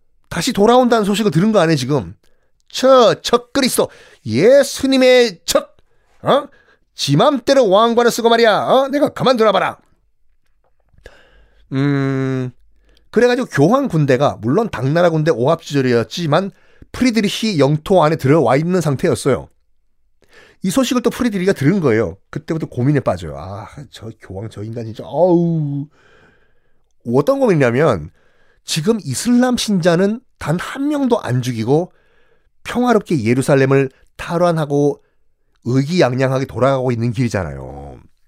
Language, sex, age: Korean, male, 30-49